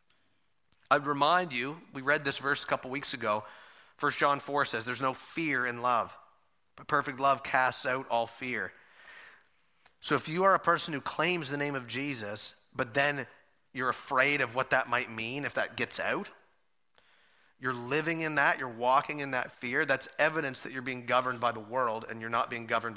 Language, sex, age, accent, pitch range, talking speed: English, male, 30-49, American, 120-165 Hz, 195 wpm